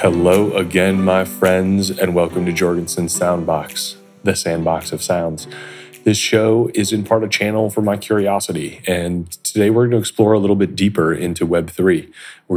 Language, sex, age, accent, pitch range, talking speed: English, male, 30-49, American, 90-100 Hz, 170 wpm